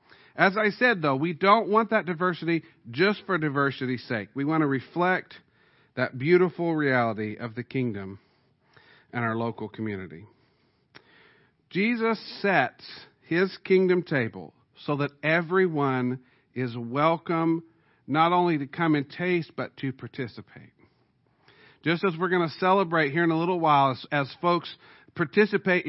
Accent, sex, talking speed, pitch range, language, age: American, male, 140 wpm, 130-180 Hz, English, 50-69